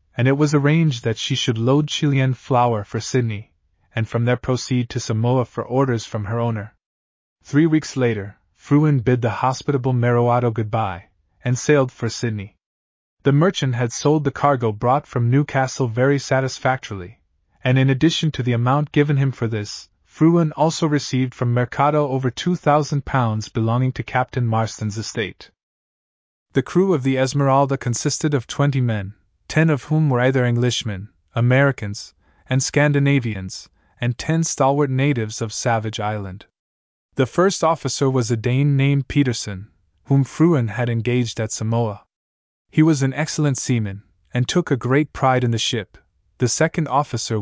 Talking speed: 155 wpm